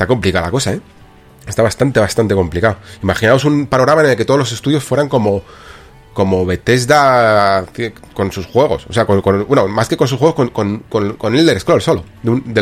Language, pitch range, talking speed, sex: Spanish, 95-130 Hz, 215 wpm, male